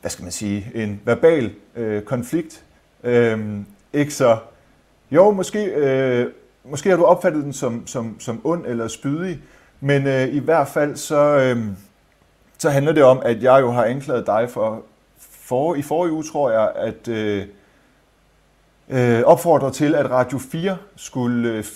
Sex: male